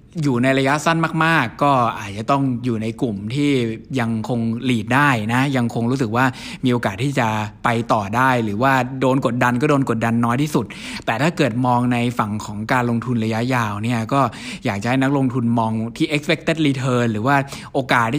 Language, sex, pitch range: Thai, male, 115-140 Hz